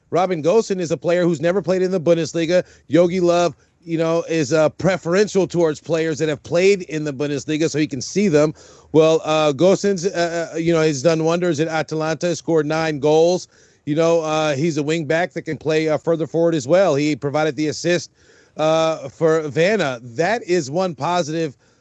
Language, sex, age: English, male, 40-59